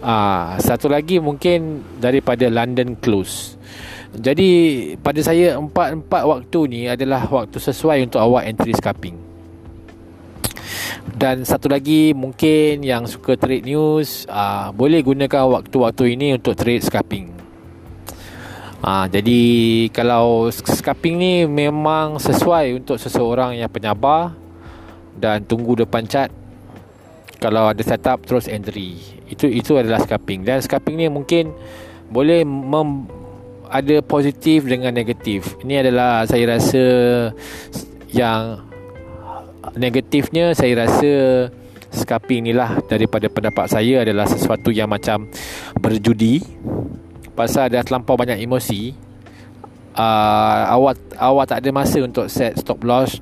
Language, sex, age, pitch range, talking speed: Malay, male, 20-39, 105-135 Hz, 115 wpm